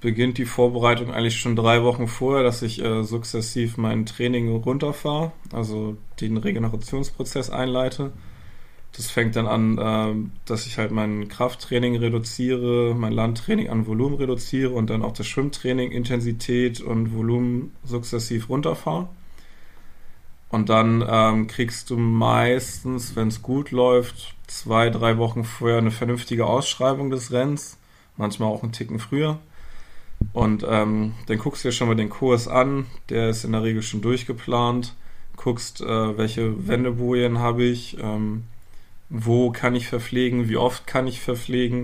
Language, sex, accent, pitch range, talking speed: German, male, German, 110-125 Hz, 150 wpm